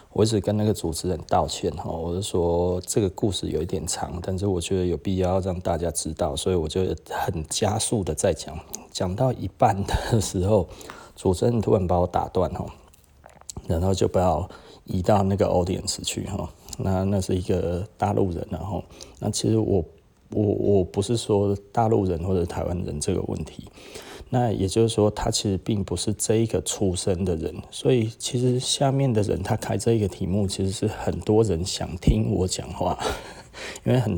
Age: 20-39